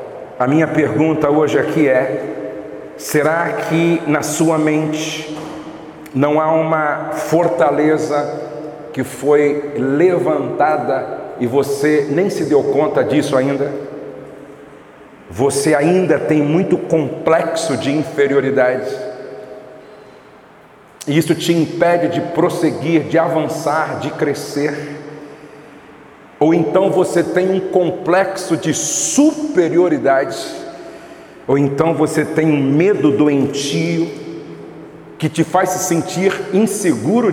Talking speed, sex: 105 wpm, male